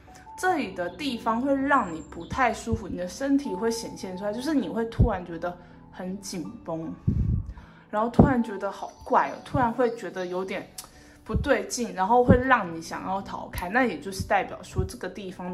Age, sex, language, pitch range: 20-39, female, Chinese, 180-245 Hz